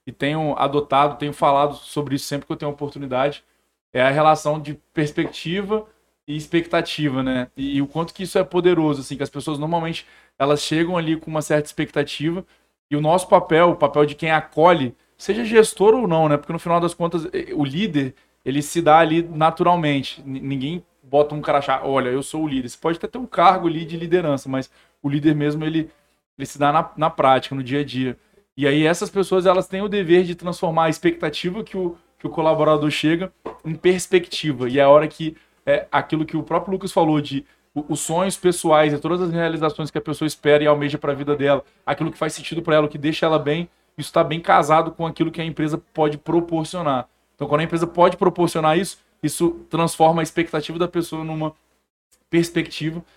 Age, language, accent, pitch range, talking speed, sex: 20-39, Portuguese, Brazilian, 145-170 Hz, 205 wpm, male